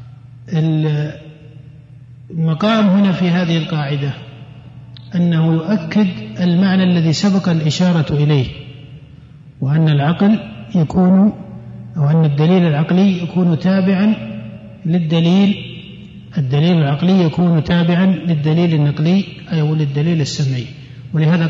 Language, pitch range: Arabic, 140-175 Hz